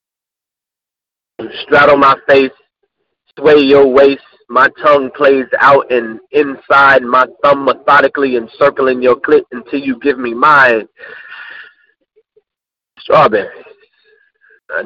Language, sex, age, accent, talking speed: English, male, 30-49, American, 100 wpm